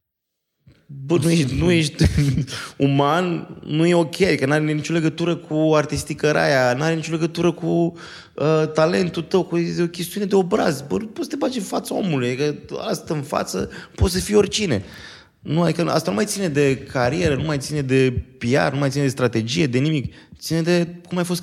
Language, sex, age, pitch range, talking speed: Romanian, male, 20-39, 120-165 Hz, 195 wpm